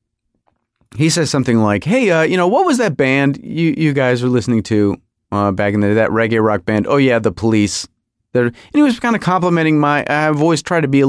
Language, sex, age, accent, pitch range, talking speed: English, male, 30-49, American, 115-170 Hz, 245 wpm